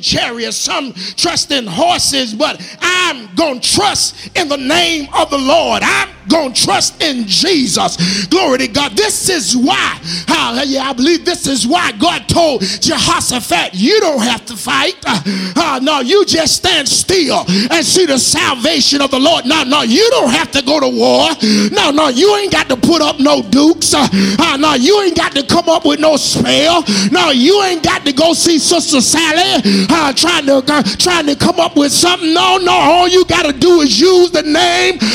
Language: English